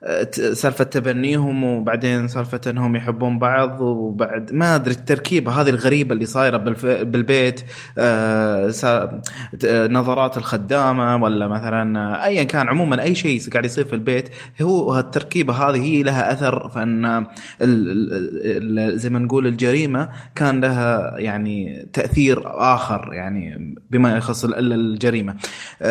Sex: male